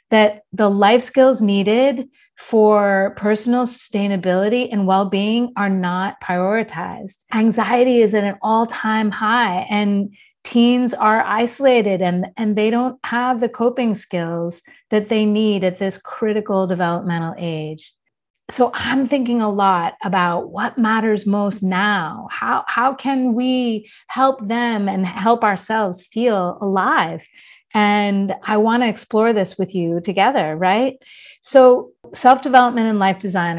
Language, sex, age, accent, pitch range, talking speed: English, female, 30-49, American, 190-240 Hz, 135 wpm